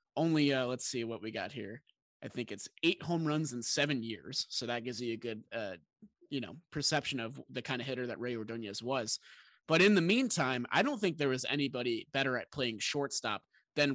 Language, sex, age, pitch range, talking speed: English, male, 20-39, 120-155 Hz, 220 wpm